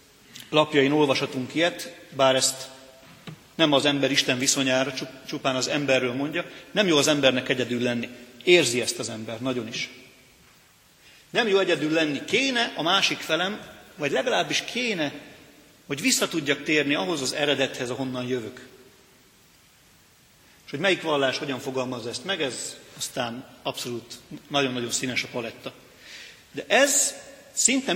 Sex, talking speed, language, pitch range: male, 135 wpm, Hungarian, 125-155 Hz